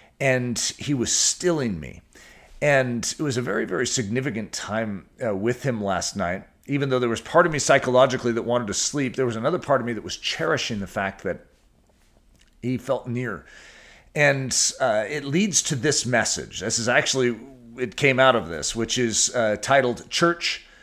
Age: 40-59